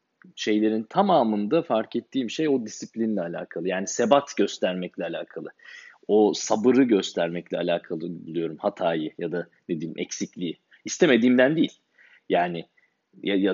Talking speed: 115 wpm